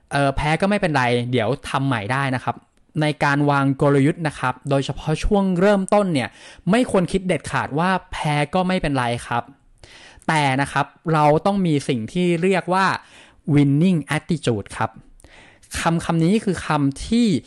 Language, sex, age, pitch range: English, male, 20-39, 135-180 Hz